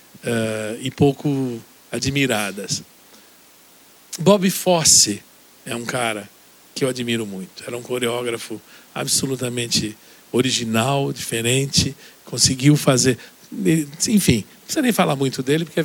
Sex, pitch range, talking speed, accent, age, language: male, 120-160 Hz, 115 wpm, Brazilian, 60-79, Portuguese